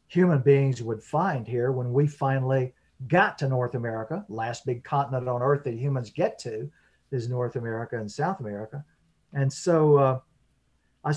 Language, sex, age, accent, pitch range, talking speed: English, male, 50-69, American, 125-145 Hz, 165 wpm